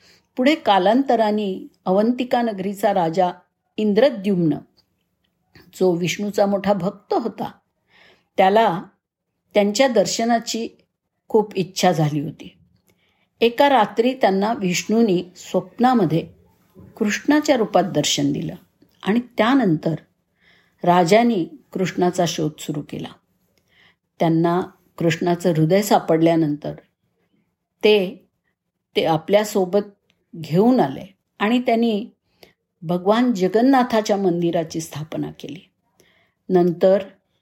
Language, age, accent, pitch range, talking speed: Marathi, 50-69, native, 170-220 Hz, 80 wpm